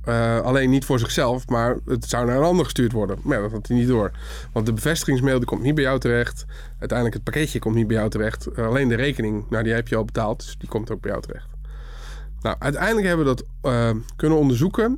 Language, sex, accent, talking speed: Dutch, male, Dutch, 245 wpm